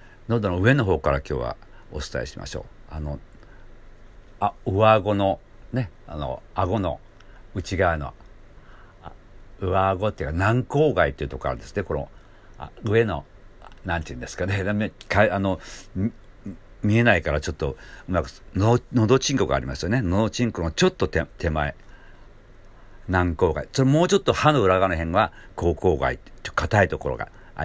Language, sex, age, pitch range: Japanese, male, 60-79, 85-115 Hz